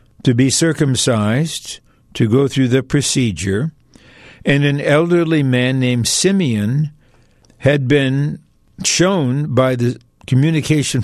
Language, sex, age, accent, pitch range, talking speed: English, male, 60-79, American, 130-165 Hz, 110 wpm